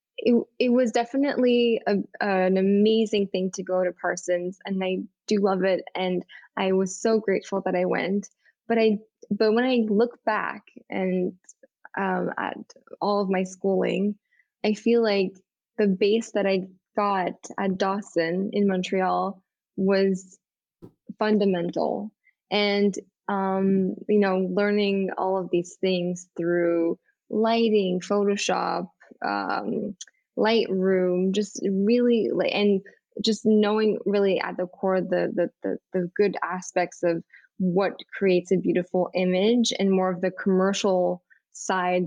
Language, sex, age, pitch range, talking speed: English, female, 10-29, 185-210 Hz, 135 wpm